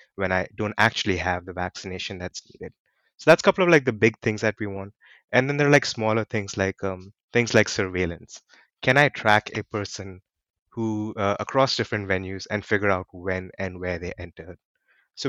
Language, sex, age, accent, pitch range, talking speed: English, male, 20-39, Indian, 95-115 Hz, 205 wpm